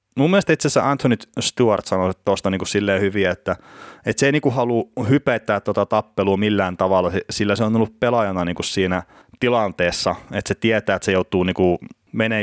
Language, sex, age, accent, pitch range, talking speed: Finnish, male, 30-49, native, 90-110 Hz, 185 wpm